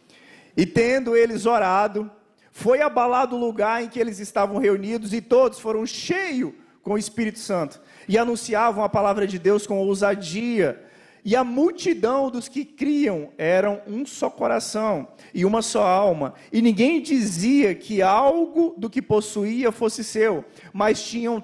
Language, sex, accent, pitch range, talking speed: Portuguese, male, Brazilian, 175-230 Hz, 155 wpm